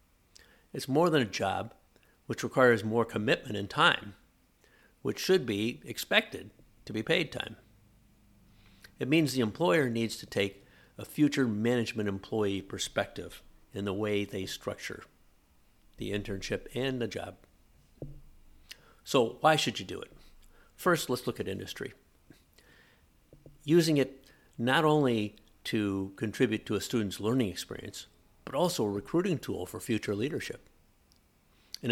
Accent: American